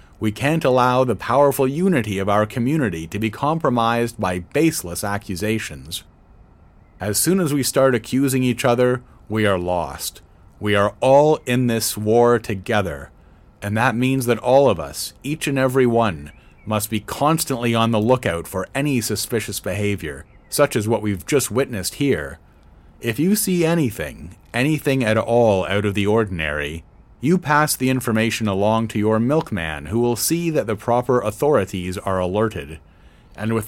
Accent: American